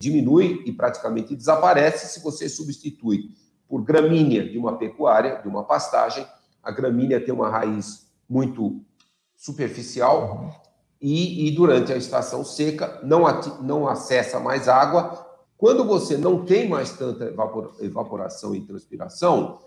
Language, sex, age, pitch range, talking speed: Portuguese, male, 50-69, 115-155 Hz, 130 wpm